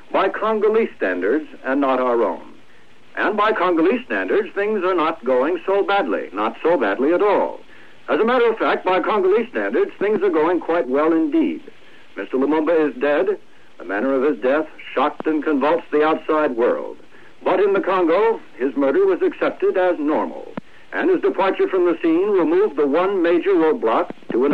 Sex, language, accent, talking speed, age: male, English, American, 180 wpm, 70-89